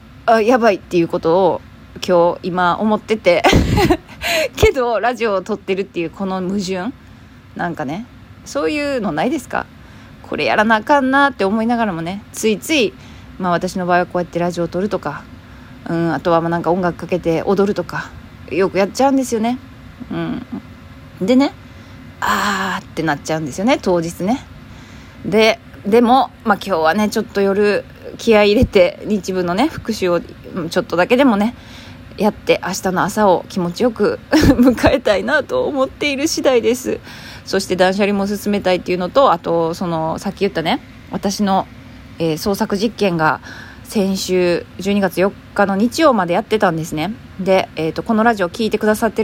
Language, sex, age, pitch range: Japanese, female, 20-39, 175-230 Hz